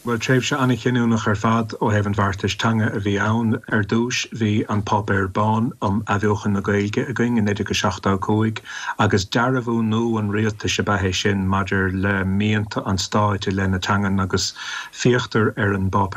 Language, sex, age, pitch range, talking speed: English, male, 30-49, 100-110 Hz, 165 wpm